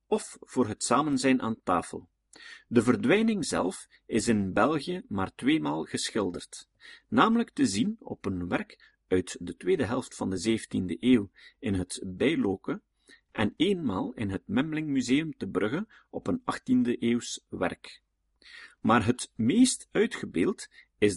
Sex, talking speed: male, 140 wpm